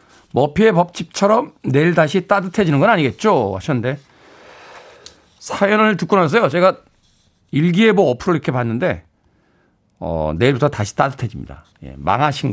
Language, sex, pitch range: Korean, male, 115-170 Hz